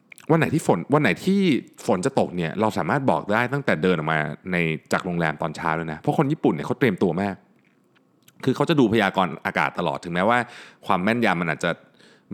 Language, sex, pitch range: Thai, male, 90-145 Hz